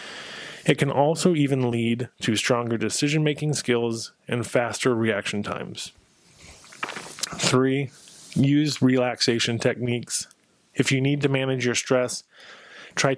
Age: 20-39